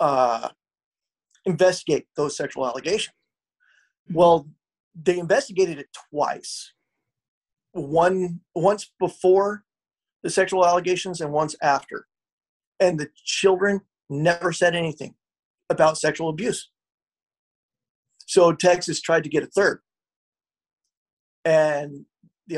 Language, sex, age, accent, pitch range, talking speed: English, male, 40-59, American, 150-185 Hz, 100 wpm